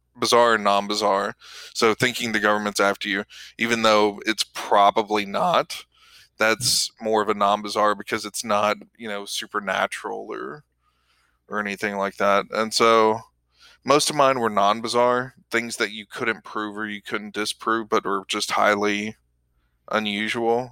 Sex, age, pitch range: male, 20-39, 105-115 Hz